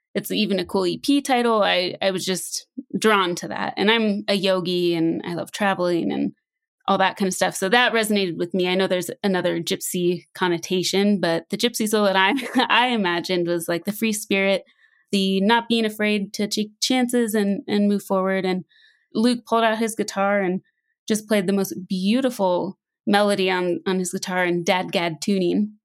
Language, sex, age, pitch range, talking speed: English, female, 20-39, 185-225 Hz, 195 wpm